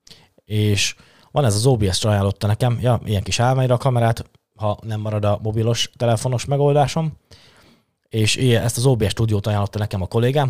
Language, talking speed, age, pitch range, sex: Hungarian, 165 wpm, 20-39, 100-120 Hz, male